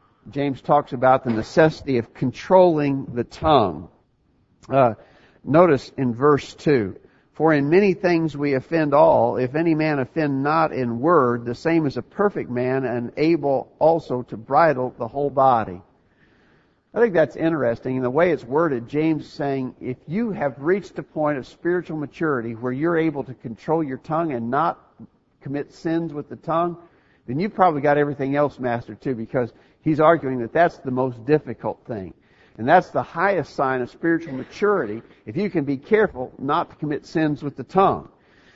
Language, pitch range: English, 125-160 Hz